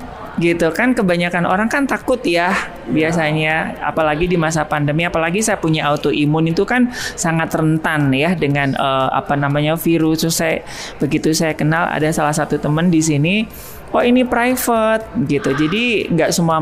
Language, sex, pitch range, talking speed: Indonesian, male, 155-220 Hz, 155 wpm